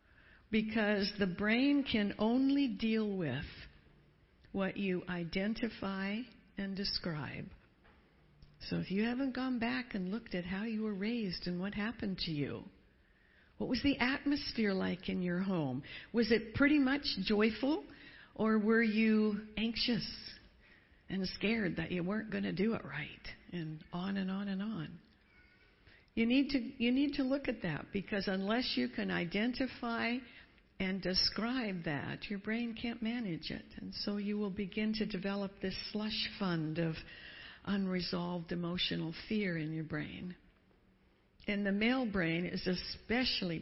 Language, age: English, 60-79